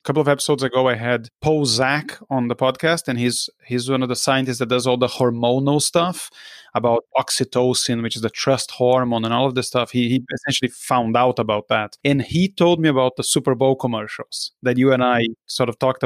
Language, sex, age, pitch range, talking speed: English, male, 30-49, 120-150 Hz, 225 wpm